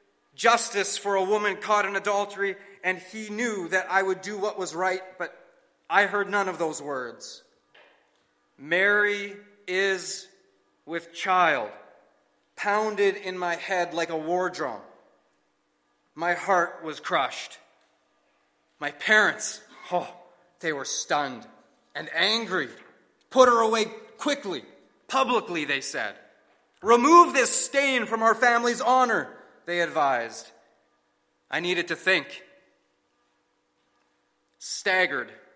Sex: male